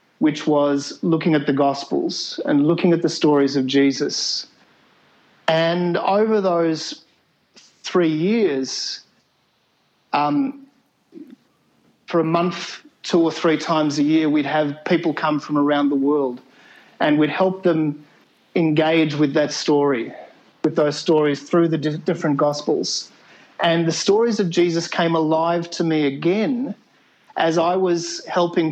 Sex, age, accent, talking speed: male, 40-59, Australian, 135 wpm